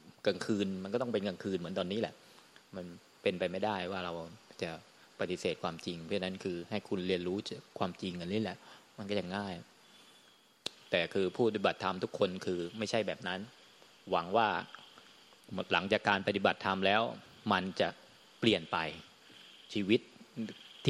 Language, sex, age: Thai, male, 20-39